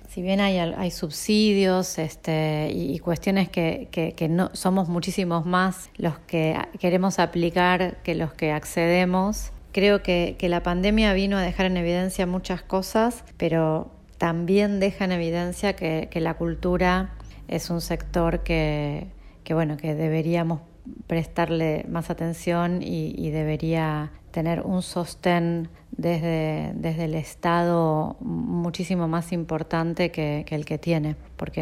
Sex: female